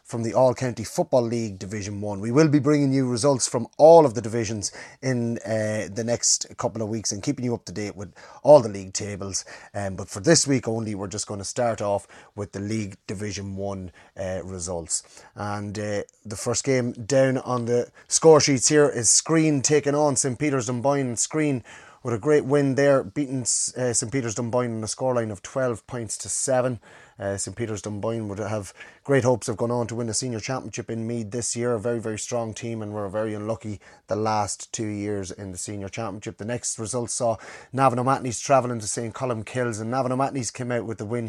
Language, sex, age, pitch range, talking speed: English, male, 30-49, 105-125 Hz, 210 wpm